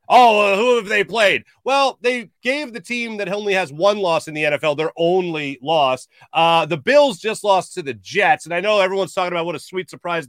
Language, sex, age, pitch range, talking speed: English, male, 30-49, 150-190 Hz, 225 wpm